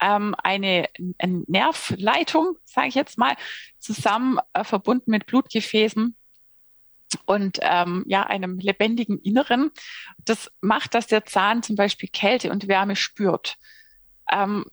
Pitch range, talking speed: 195-245 Hz, 120 wpm